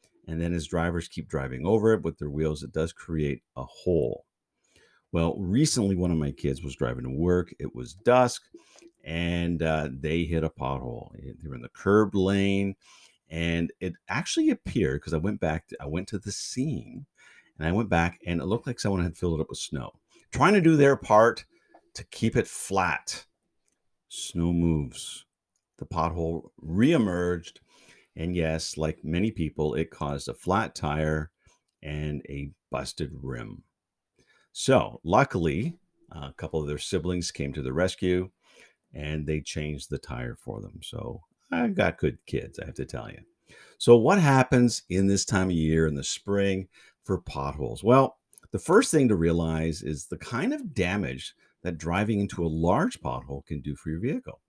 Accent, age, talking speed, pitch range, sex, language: American, 50-69, 175 wpm, 75-100 Hz, male, English